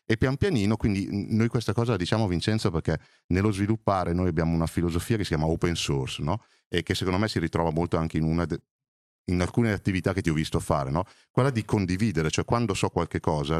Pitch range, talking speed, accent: 85-115 Hz, 225 wpm, native